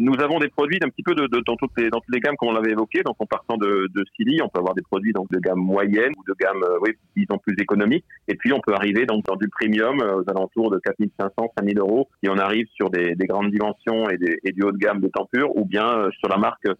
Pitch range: 100-125 Hz